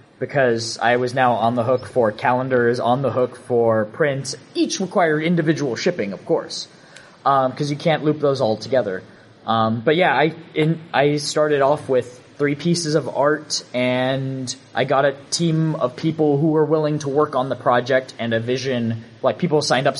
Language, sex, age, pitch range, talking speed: English, male, 20-39, 120-150 Hz, 190 wpm